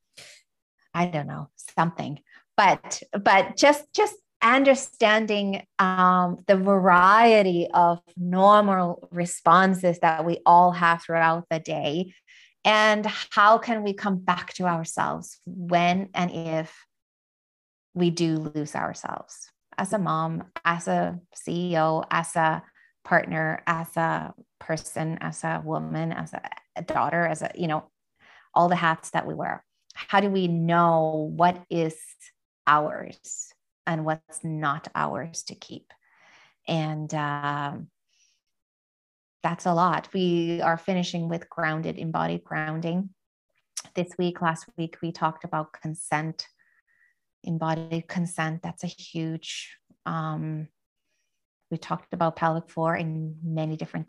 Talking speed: 125 wpm